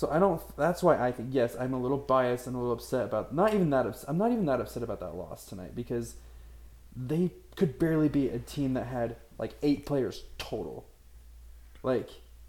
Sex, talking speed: male, 210 wpm